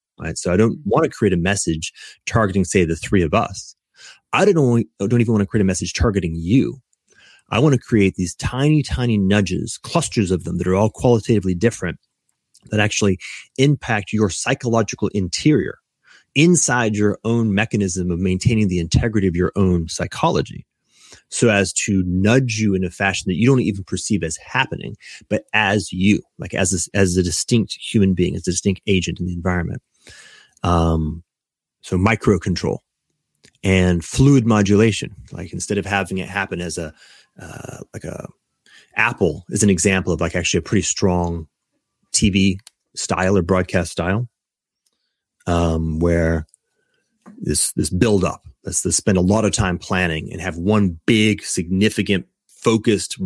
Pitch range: 90-110 Hz